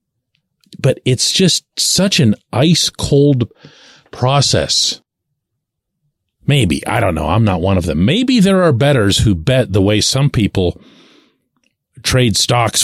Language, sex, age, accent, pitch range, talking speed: English, male, 40-59, American, 95-130 Hz, 135 wpm